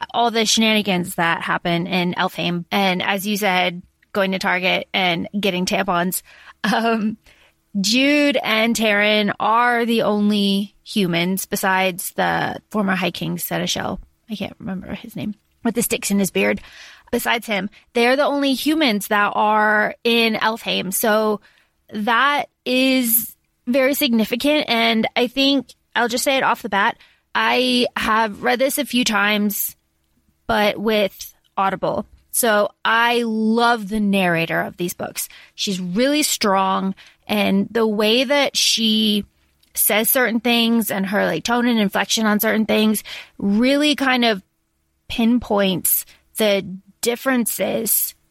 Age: 20-39